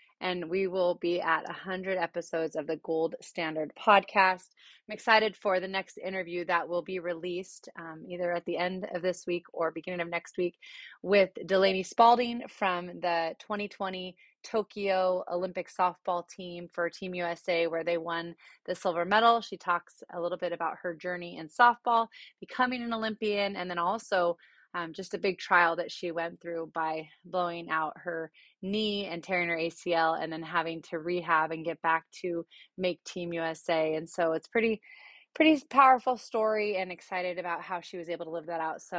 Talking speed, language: 185 wpm, English